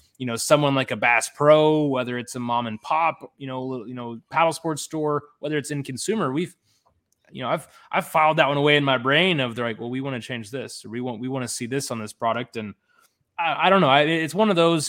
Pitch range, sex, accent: 120-145 Hz, male, American